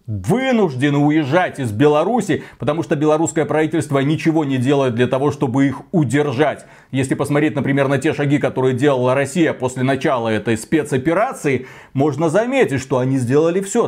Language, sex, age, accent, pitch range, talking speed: Russian, male, 30-49, native, 135-180 Hz, 150 wpm